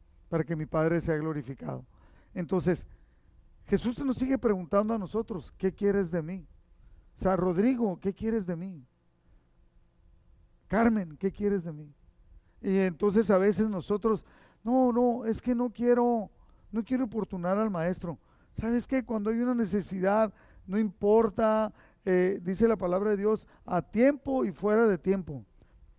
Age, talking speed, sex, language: 50-69, 150 wpm, male, Spanish